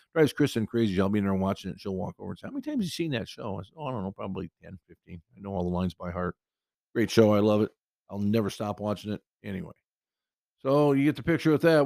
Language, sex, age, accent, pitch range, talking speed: English, male, 50-69, American, 95-135 Hz, 280 wpm